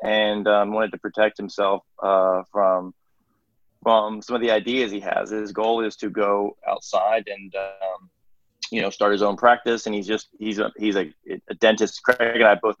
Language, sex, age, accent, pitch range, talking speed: English, male, 20-39, American, 95-110 Hz, 195 wpm